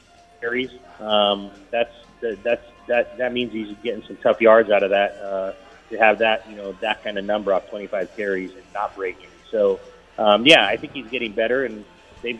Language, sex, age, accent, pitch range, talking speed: English, male, 30-49, American, 105-125 Hz, 200 wpm